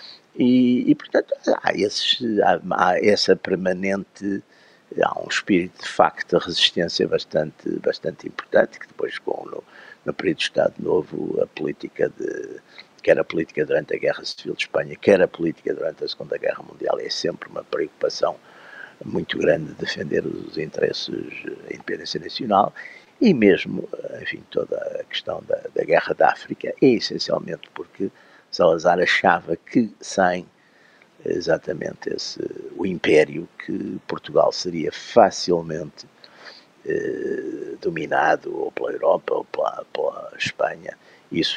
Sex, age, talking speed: male, 50-69, 135 wpm